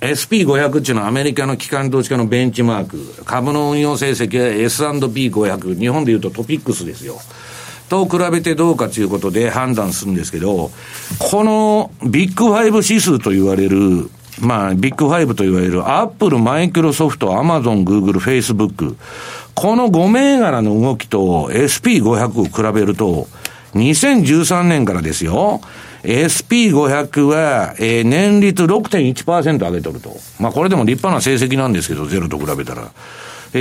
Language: Japanese